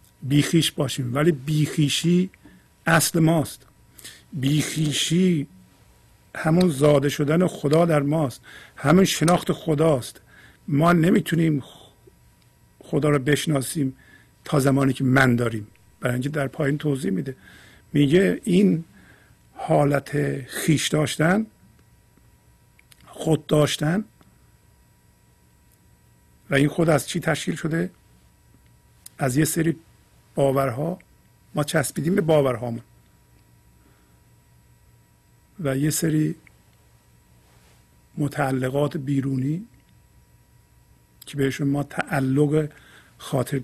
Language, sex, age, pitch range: Persian, male, 50-69, 120-155 Hz